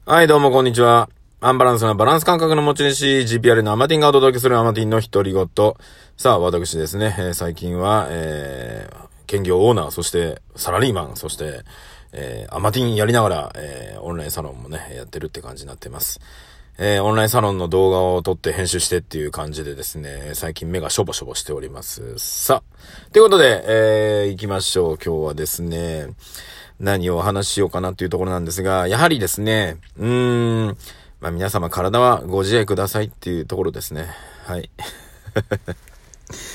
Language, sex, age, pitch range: Japanese, male, 40-59, 80-110 Hz